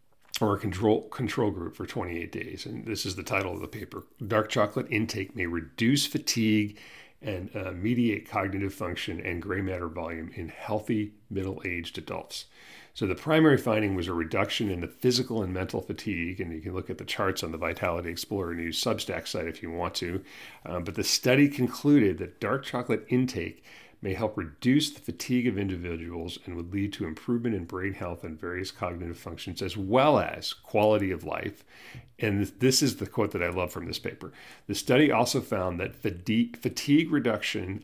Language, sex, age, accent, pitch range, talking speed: English, male, 40-59, American, 90-120 Hz, 190 wpm